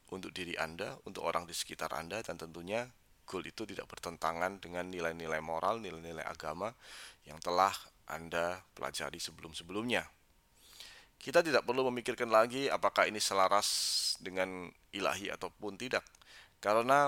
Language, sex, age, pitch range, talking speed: English, male, 20-39, 85-110 Hz, 130 wpm